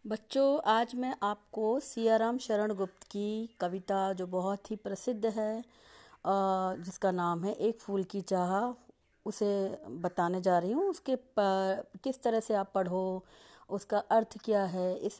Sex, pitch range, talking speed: female, 195-255 Hz, 155 wpm